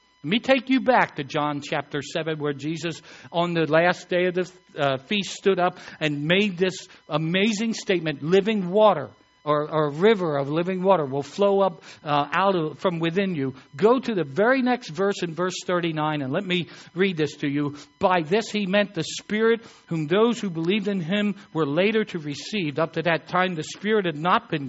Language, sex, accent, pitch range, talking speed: English, male, American, 155-215 Hz, 200 wpm